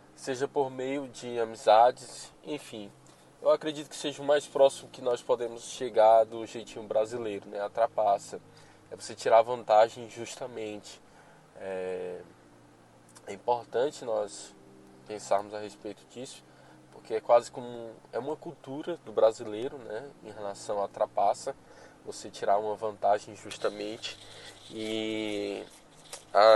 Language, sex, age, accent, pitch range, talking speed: Portuguese, male, 10-29, Brazilian, 105-120 Hz, 130 wpm